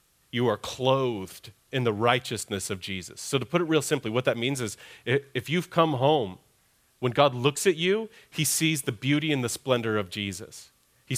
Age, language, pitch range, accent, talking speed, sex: 30-49, English, 125-170 Hz, American, 200 wpm, male